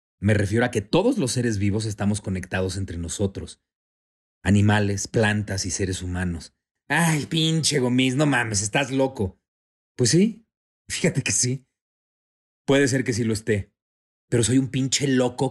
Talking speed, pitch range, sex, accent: 155 wpm, 95-125 Hz, male, Mexican